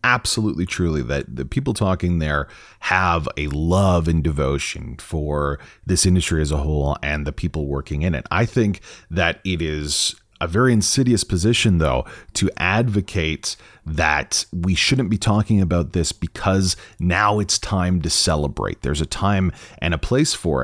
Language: English